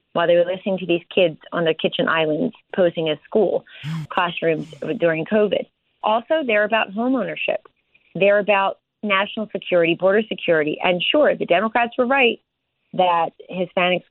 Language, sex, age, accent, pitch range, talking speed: English, female, 30-49, American, 180-220 Hz, 155 wpm